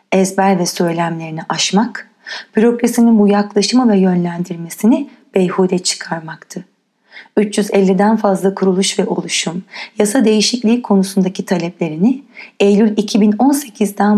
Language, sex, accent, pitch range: Turkish, female, native, 180-220 Hz